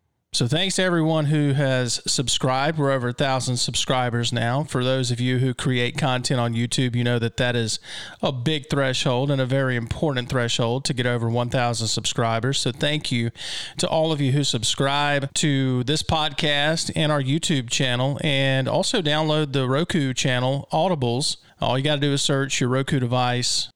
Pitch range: 125-155 Hz